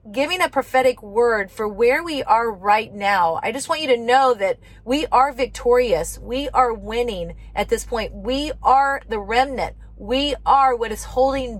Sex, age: female, 30-49